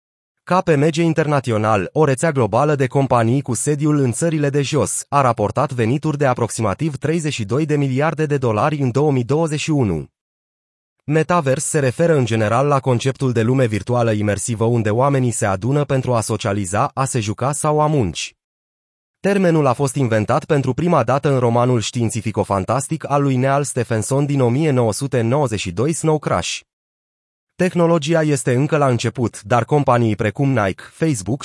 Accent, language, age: native, Romanian, 30-49